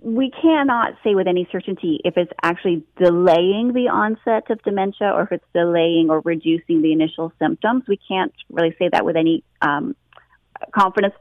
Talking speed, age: 170 wpm, 30-49